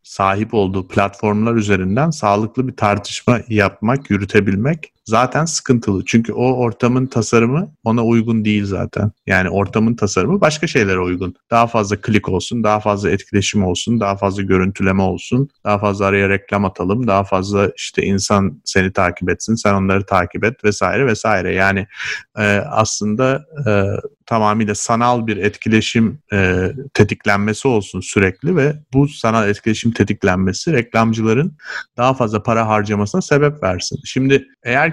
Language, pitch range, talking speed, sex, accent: Turkish, 100-125 Hz, 135 wpm, male, native